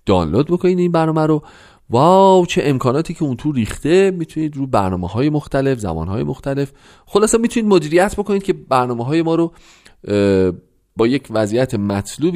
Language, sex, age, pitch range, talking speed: Persian, male, 40-59, 110-165 Hz, 160 wpm